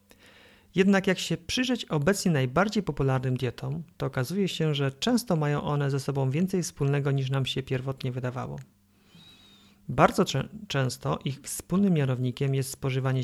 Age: 40-59